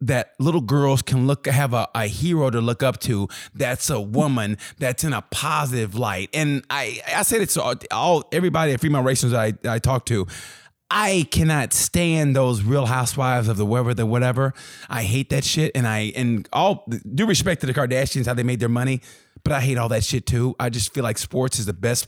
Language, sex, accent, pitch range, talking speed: English, male, American, 120-150 Hz, 220 wpm